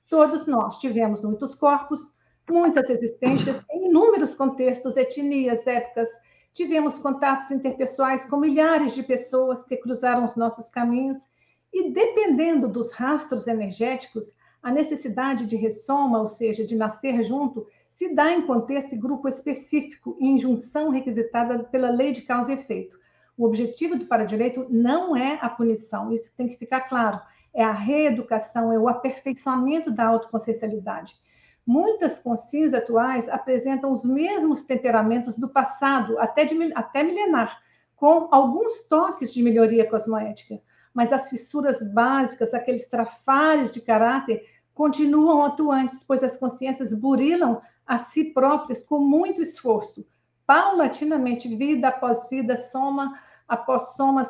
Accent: Brazilian